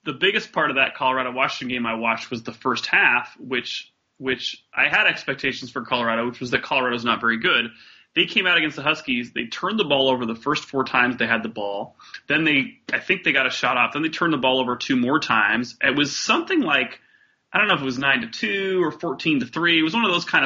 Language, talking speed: English, 260 wpm